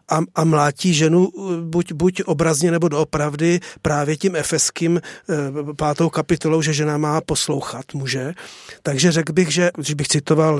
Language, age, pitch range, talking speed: Czech, 40-59, 145-160 Hz, 145 wpm